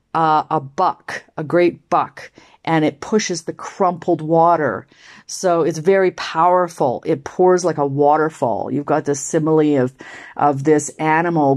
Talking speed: 150 wpm